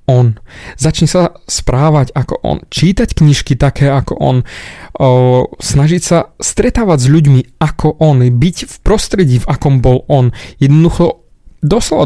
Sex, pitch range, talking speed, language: male, 130-170 Hz, 135 wpm, Slovak